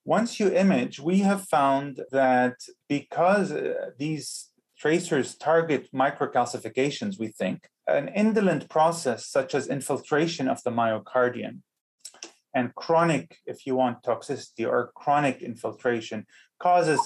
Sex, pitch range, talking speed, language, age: male, 120-165 Hz, 115 wpm, English, 30-49